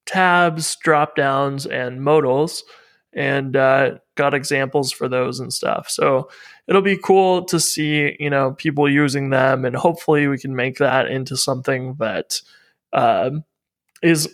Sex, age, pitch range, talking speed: male, 20-39, 135-160 Hz, 145 wpm